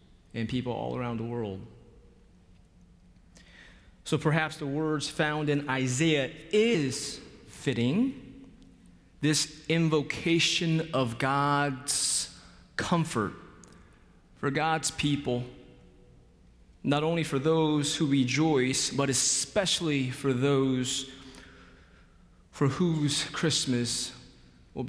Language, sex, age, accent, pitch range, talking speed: English, male, 30-49, American, 110-140 Hz, 90 wpm